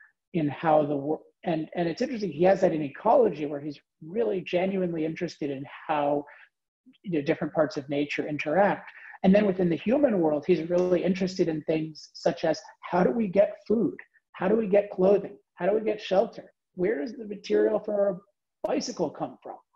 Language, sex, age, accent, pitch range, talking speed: English, male, 40-59, American, 150-190 Hz, 195 wpm